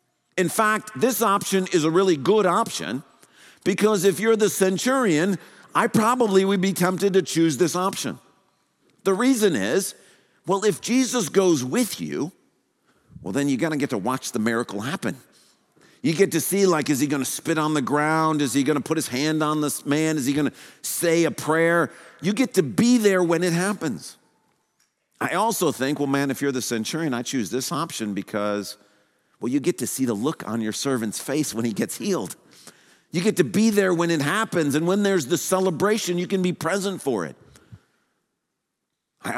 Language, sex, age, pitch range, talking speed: English, male, 50-69, 145-200 Hz, 200 wpm